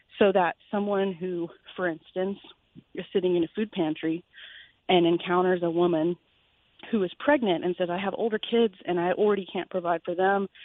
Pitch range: 170-195 Hz